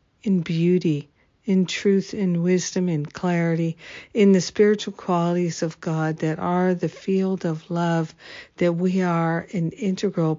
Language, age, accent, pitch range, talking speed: English, 60-79, American, 165-190 Hz, 145 wpm